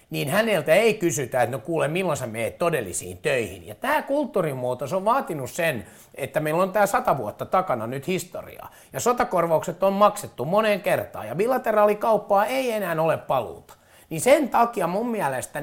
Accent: native